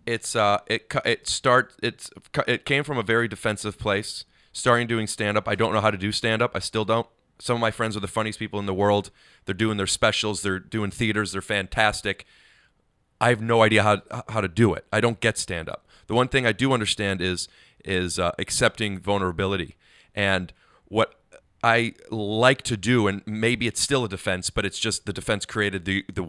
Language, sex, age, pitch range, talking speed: English, male, 30-49, 100-115 Hz, 205 wpm